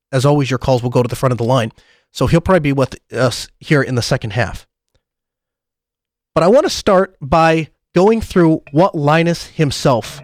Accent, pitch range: American, 130-180 Hz